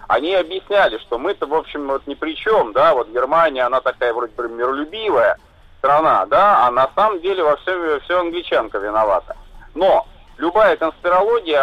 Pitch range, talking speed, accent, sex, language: 120-160 Hz, 160 wpm, native, male, Russian